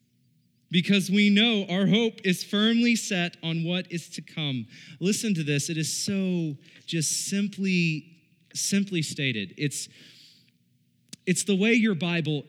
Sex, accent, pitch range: male, American, 130-175 Hz